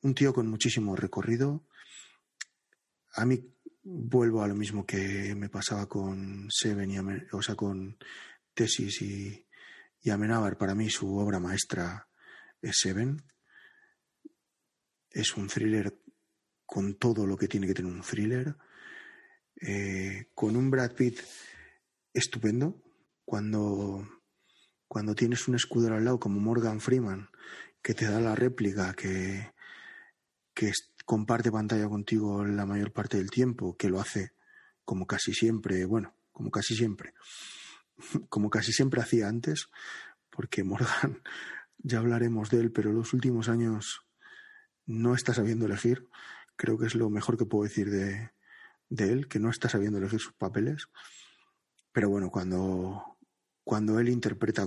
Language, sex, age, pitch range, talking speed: Spanish, male, 30-49, 100-120 Hz, 140 wpm